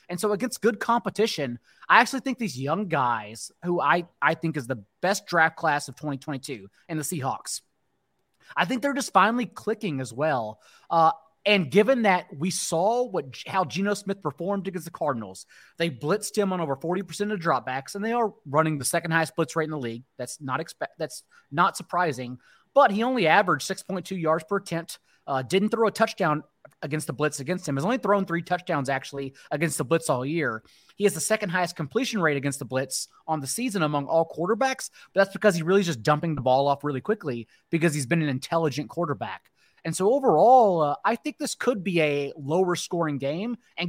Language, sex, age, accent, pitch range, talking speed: English, male, 30-49, American, 145-200 Hz, 205 wpm